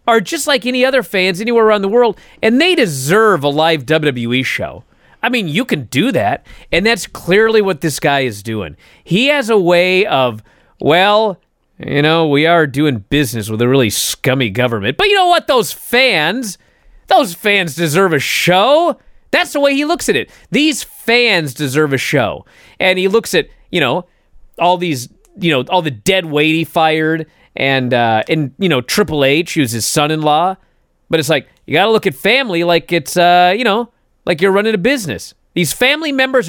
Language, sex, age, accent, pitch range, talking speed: English, male, 30-49, American, 135-225 Hz, 195 wpm